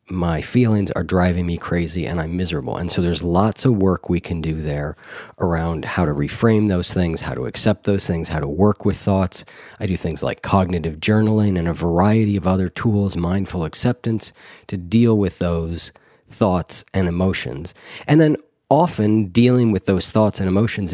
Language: English